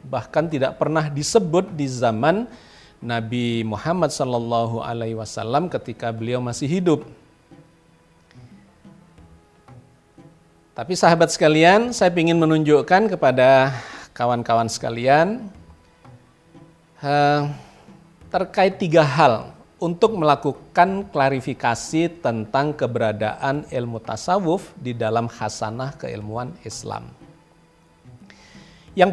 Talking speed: 80 wpm